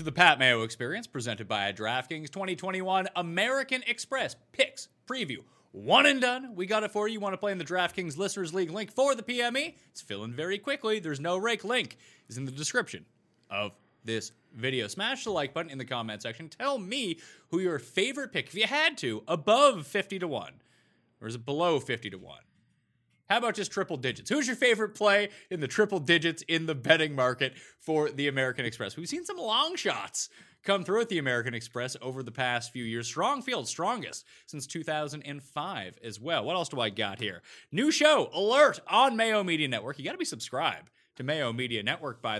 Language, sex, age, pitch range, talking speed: English, male, 30-49, 125-200 Hz, 205 wpm